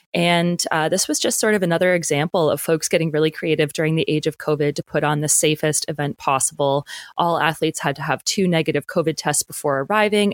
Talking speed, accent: 215 wpm, American